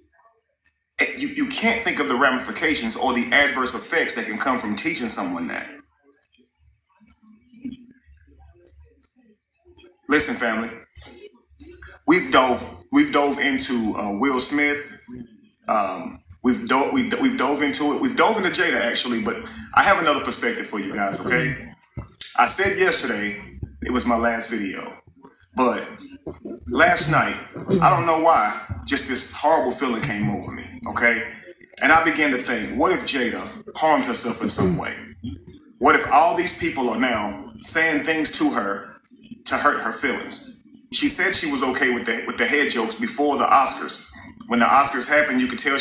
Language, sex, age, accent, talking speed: English, male, 30-49, American, 160 wpm